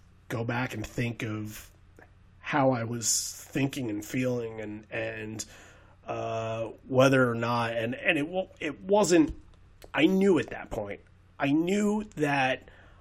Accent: American